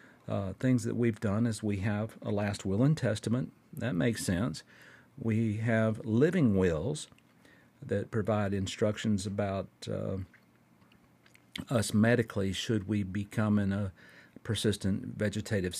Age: 50-69